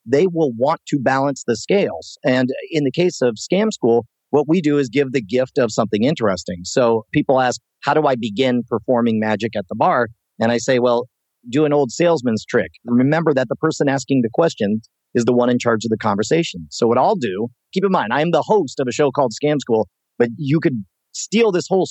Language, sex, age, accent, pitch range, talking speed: English, male, 40-59, American, 120-165 Hz, 225 wpm